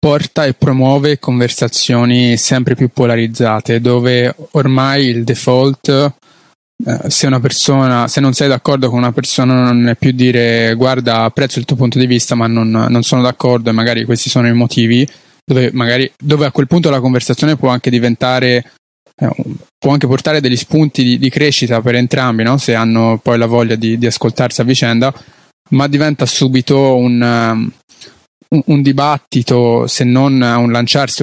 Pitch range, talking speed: 120-140 Hz, 170 wpm